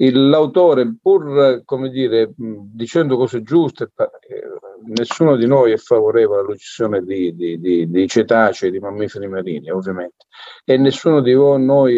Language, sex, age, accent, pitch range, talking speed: Italian, male, 40-59, native, 115-155 Hz, 130 wpm